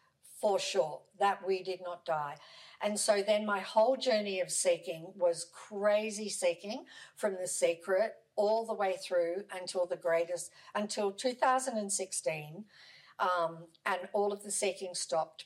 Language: English